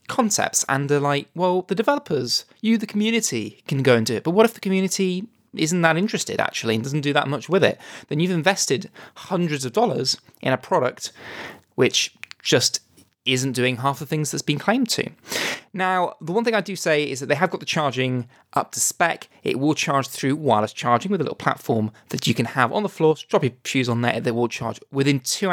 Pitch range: 130-185 Hz